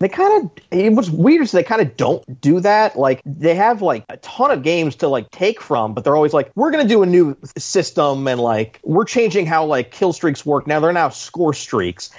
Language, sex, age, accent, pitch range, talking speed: English, male, 30-49, American, 120-160 Hz, 240 wpm